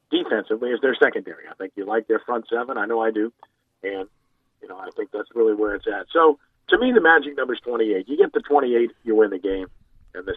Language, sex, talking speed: English, male, 245 wpm